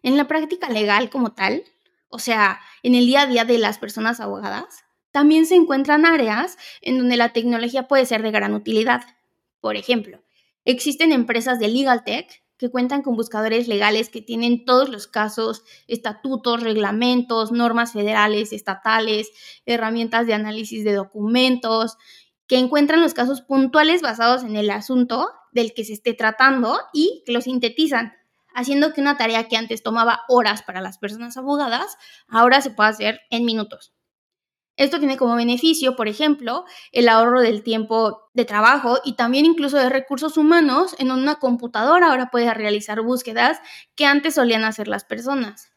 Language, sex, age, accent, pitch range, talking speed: English, female, 20-39, Mexican, 225-275 Hz, 165 wpm